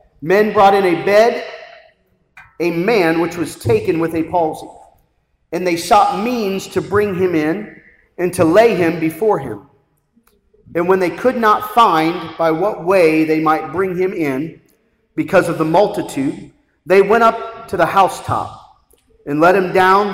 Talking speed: 165 wpm